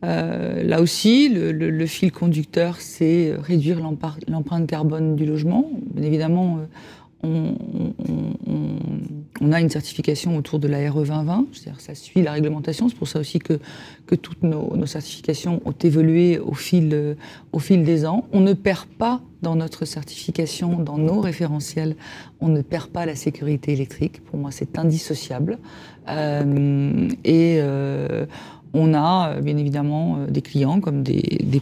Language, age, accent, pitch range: French, 40-59, French, 150-175 Hz